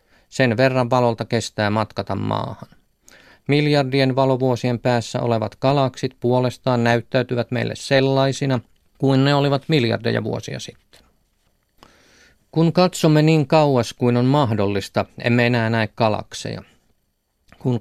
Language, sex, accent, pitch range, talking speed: Finnish, male, native, 115-135 Hz, 110 wpm